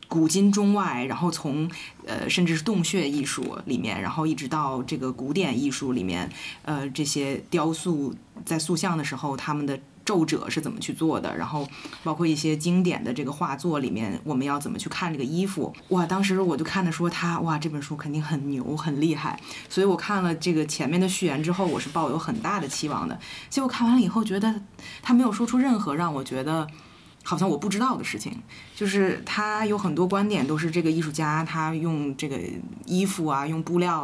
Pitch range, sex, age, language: 150-195 Hz, female, 20-39, Chinese